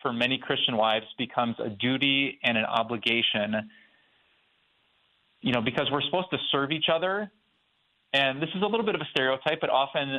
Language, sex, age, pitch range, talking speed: English, male, 30-49, 120-140 Hz, 175 wpm